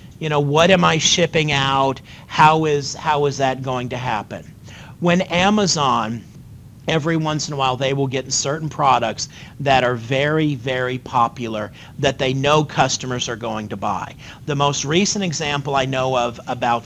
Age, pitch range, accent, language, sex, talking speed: 40-59, 125-150 Hz, American, English, male, 170 wpm